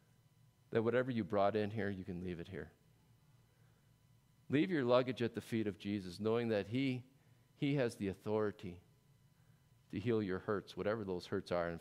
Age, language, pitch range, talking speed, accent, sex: 40-59, English, 110-145 Hz, 180 wpm, American, male